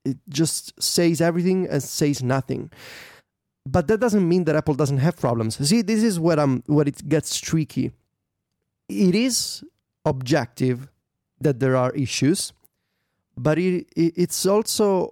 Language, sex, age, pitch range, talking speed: English, male, 30-49, 130-165 Hz, 145 wpm